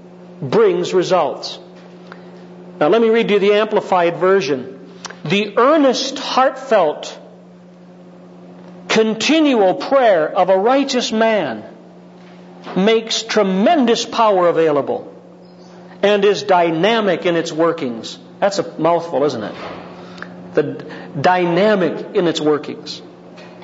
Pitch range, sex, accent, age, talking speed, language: 150-190 Hz, male, American, 50-69, 100 wpm, English